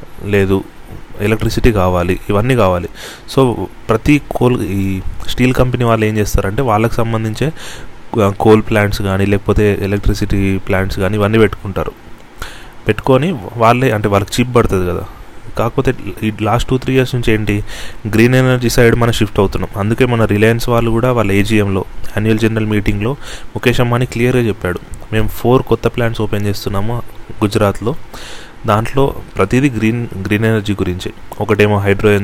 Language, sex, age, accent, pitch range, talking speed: Telugu, male, 30-49, native, 100-115 Hz, 140 wpm